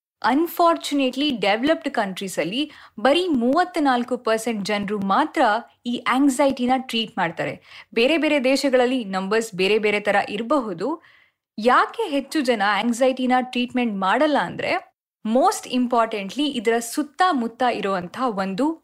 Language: Kannada